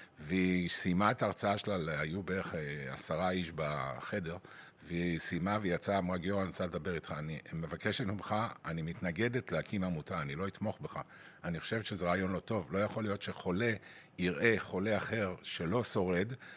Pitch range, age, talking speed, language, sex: 85-105 Hz, 50-69, 165 wpm, Hebrew, male